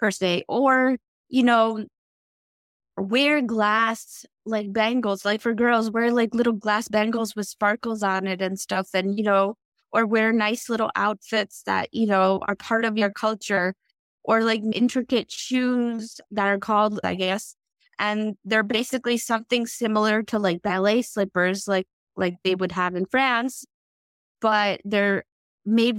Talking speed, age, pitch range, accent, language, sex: 155 wpm, 20-39, 190-225 Hz, American, English, female